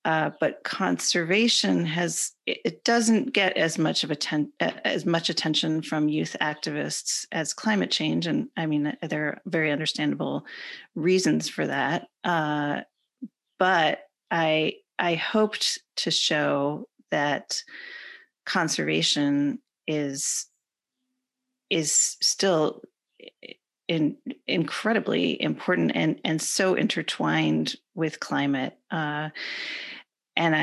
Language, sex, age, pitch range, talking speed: English, female, 40-59, 155-225 Hz, 105 wpm